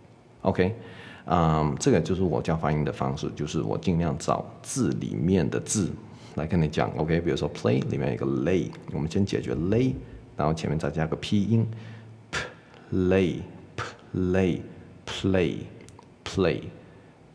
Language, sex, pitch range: Chinese, male, 80-110 Hz